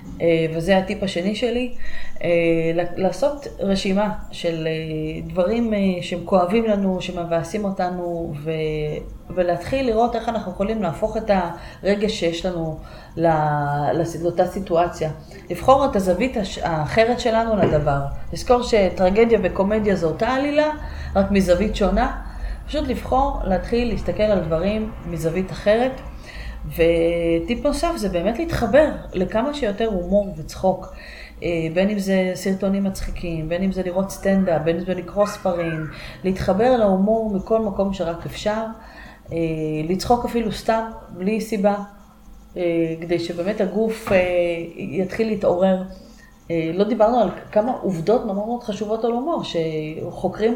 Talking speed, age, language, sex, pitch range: 115 wpm, 30-49, Hebrew, female, 170-220 Hz